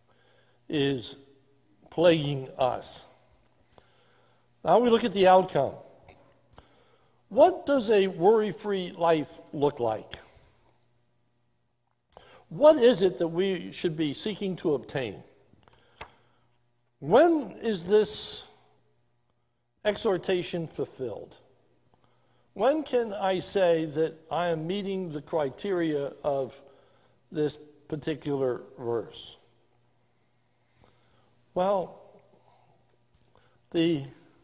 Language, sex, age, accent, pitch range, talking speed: English, male, 60-79, American, 140-200 Hz, 80 wpm